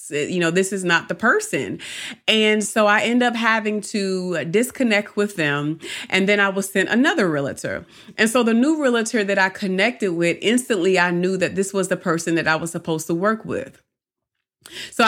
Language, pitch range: English, 175-225 Hz